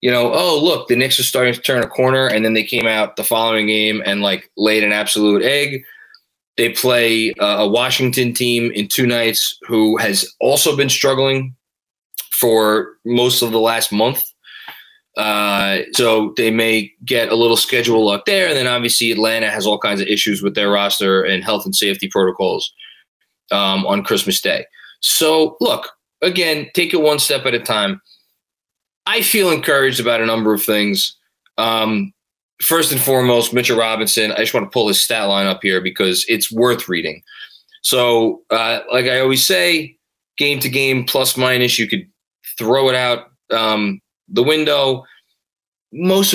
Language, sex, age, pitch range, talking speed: English, male, 20-39, 110-135 Hz, 175 wpm